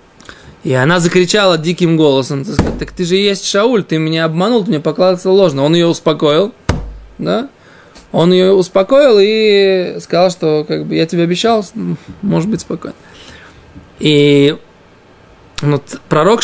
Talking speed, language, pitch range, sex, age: 140 wpm, Russian, 150-195 Hz, male, 20-39